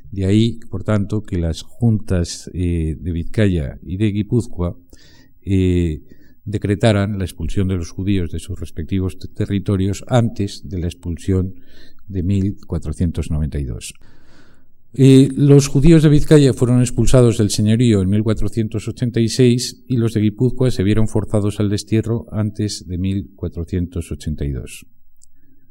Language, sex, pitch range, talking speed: Spanish, male, 90-115 Hz, 125 wpm